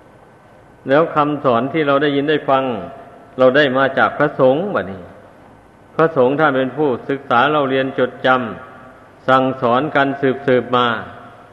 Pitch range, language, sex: 120-140 Hz, Thai, male